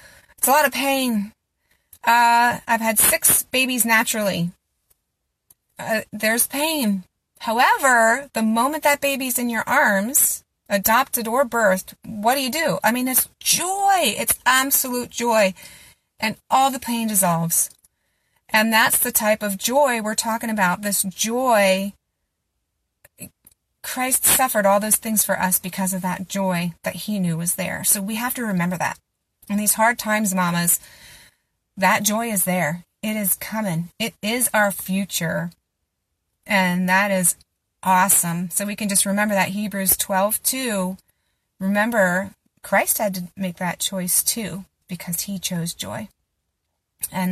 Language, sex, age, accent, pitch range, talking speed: English, female, 30-49, American, 185-230 Hz, 145 wpm